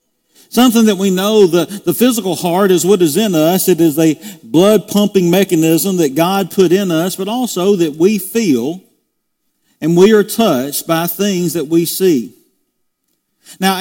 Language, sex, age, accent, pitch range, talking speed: English, male, 50-69, American, 165-205 Hz, 165 wpm